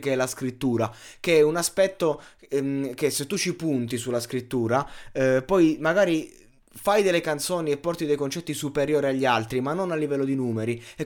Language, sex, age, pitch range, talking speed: Italian, male, 20-39, 120-160 Hz, 195 wpm